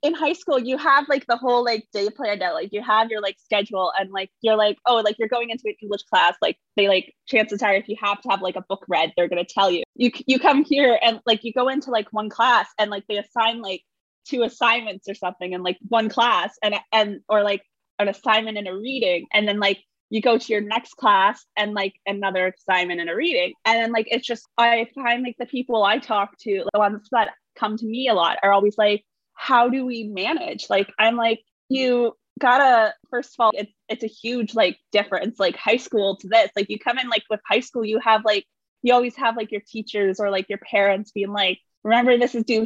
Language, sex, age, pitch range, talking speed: English, female, 20-39, 205-245 Hz, 245 wpm